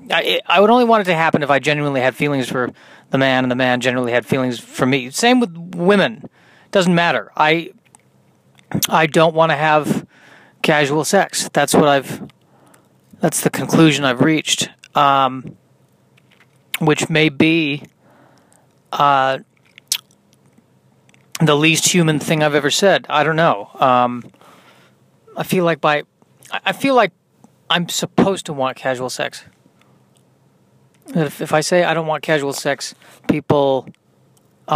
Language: English